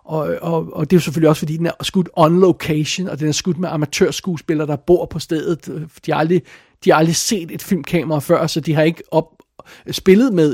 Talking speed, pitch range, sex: 235 wpm, 150-175 Hz, male